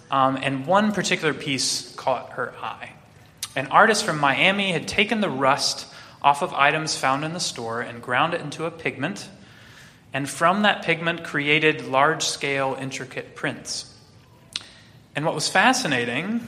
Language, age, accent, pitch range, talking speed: English, 20-39, American, 130-175 Hz, 155 wpm